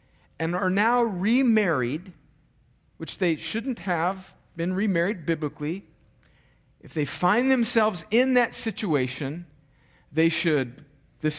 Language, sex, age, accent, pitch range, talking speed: English, male, 40-59, American, 170-240 Hz, 110 wpm